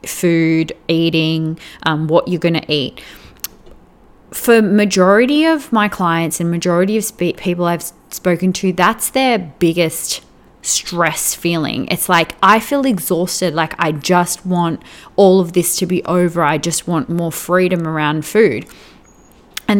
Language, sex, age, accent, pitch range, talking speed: English, female, 20-39, Australian, 165-200 Hz, 145 wpm